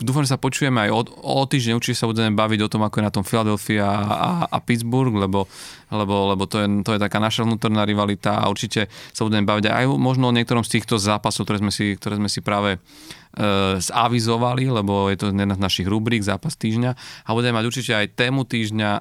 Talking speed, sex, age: 220 wpm, male, 30-49